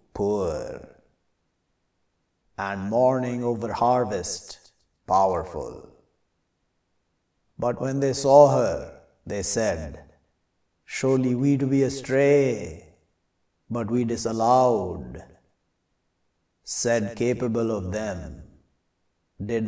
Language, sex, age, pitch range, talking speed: English, male, 60-79, 90-125 Hz, 80 wpm